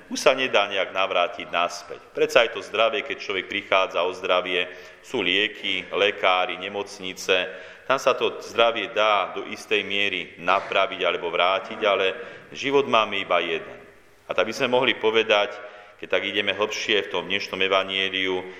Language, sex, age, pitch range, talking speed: Slovak, male, 40-59, 95-115 Hz, 160 wpm